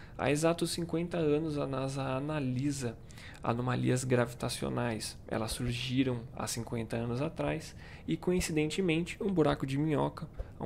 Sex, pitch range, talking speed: male, 120-155 Hz, 120 wpm